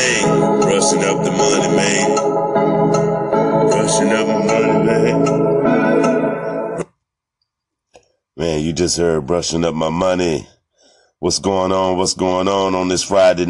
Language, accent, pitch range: English, American, 70-85 Hz